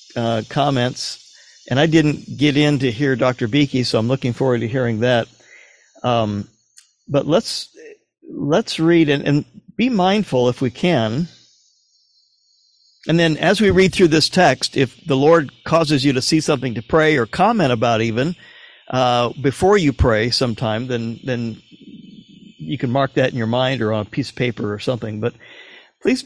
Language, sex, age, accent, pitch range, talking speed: English, male, 50-69, American, 120-155 Hz, 175 wpm